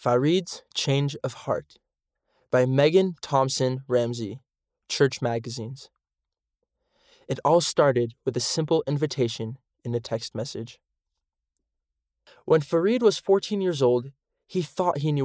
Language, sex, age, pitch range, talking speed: English, male, 20-39, 125-170 Hz, 120 wpm